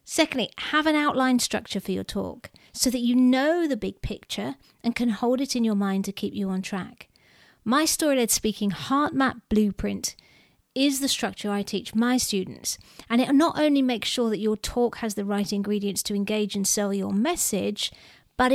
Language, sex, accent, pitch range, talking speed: English, female, British, 205-260 Hz, 195 wpm